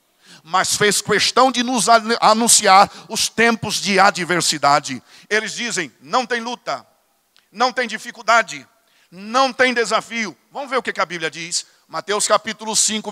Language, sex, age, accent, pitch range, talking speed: Portuguese, male, 60-79, Brazilian, 195-225 Hz, 140 wpm